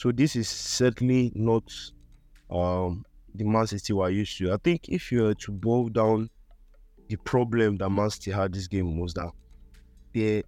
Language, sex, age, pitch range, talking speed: English, male, 20-39, 90-115 Hz, 180 wpm